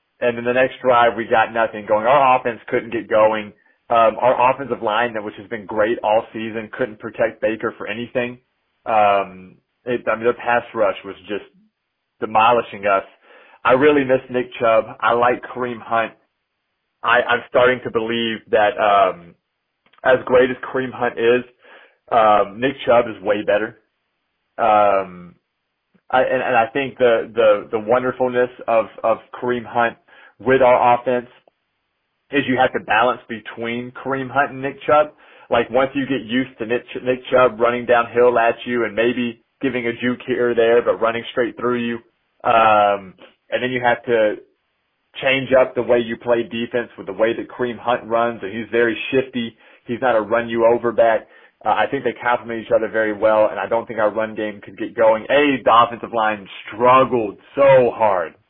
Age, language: 30-49, English